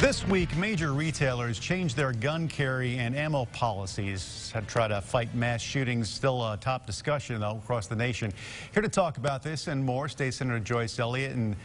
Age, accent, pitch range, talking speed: 50-69, American, 110-135 Hz, 195 wpm